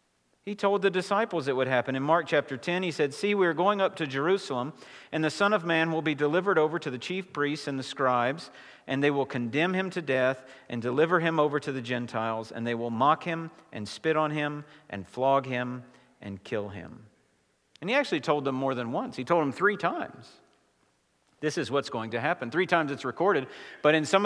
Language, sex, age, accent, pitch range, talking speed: English, male, 50-69, American, 125-180 Hz, 225 wpm